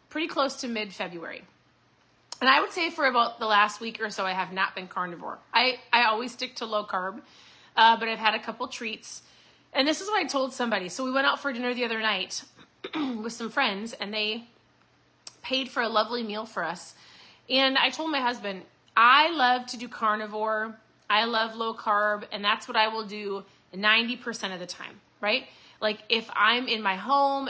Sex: female